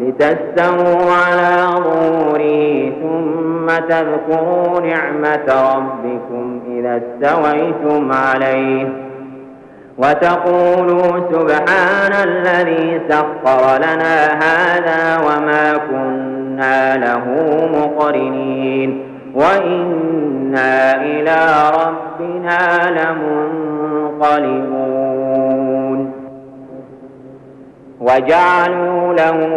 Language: Arabic